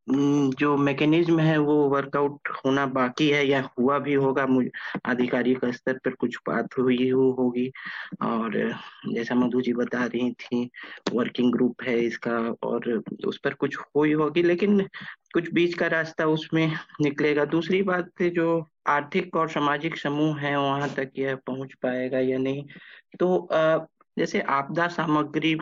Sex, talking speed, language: male, 150 wpm, Hindi